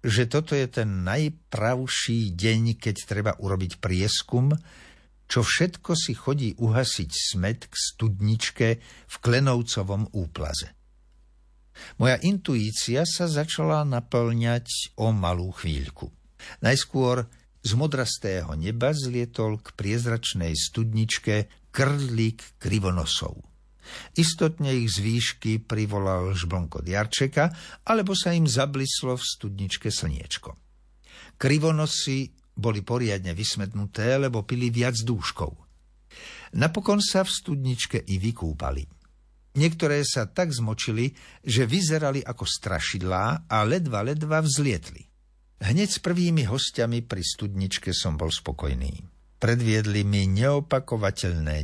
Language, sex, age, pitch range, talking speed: Slovak, male, 60-79, 95-135 Hz, 105 wpm